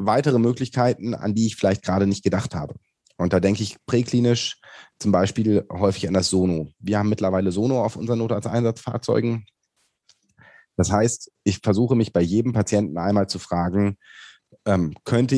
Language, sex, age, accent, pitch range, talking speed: German, male, 30-49, German, 95-115 Hz, 170 wpm